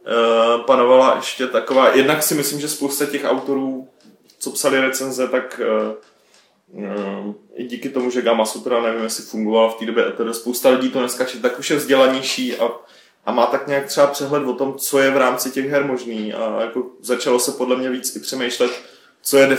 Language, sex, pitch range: Czech, male, 120-135 Hz